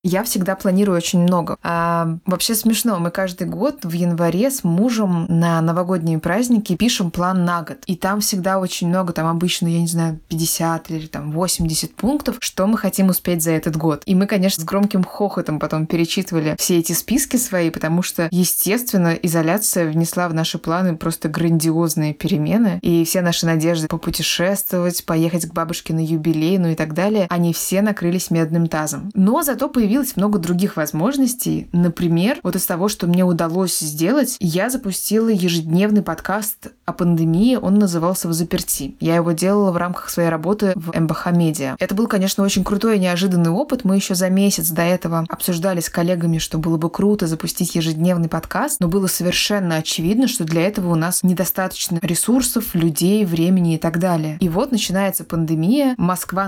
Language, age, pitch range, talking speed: Russian, 20-39, 165-195 Hz, 175 wpm